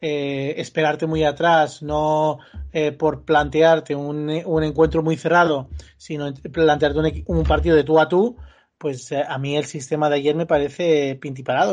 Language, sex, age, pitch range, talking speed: Spanish, male, 30-49, 145-160 Hz, 170 wpm